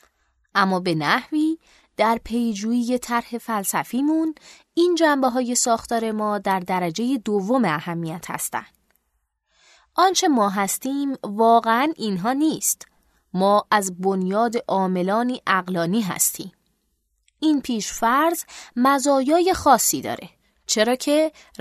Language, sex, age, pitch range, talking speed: Persian, female, 20-39, 190-275 Hz, 95 wpm